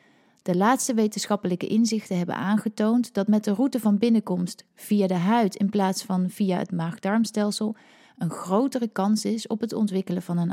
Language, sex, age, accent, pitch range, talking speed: Dutch, female, 30-49, Dutch, 185-230 Hz, 170 wpm